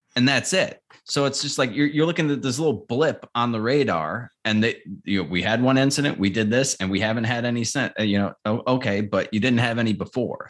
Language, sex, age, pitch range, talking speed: English, male, 30-49, 105-135 Hz, 240 wpm